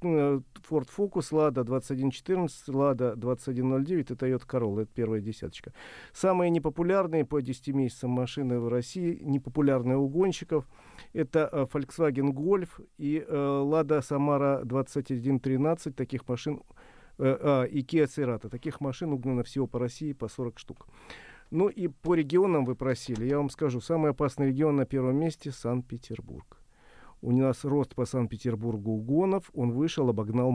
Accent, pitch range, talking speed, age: native, 125-150 Hz, 135 wpm, 40-59